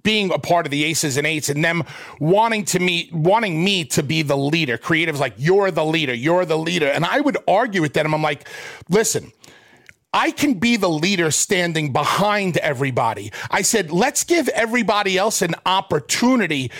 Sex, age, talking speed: male, 40-59, 185 wpm